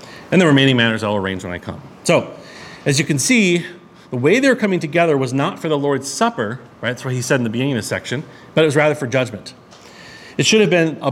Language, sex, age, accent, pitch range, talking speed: English, male, 40-59, American, 120-165 Hz, 260 wpm